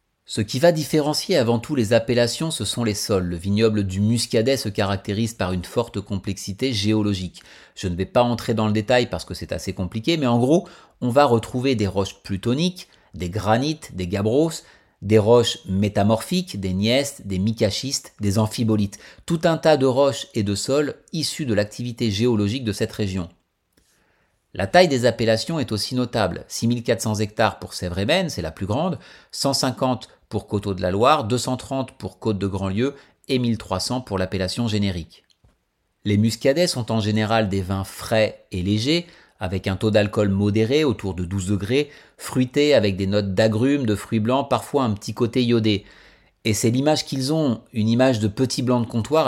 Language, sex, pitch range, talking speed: French, male, 100-130 Hz, 180 wpm